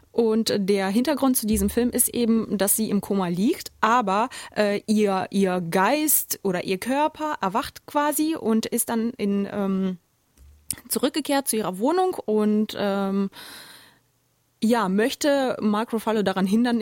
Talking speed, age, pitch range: 140 wpm, 20-39, 200-245 Hz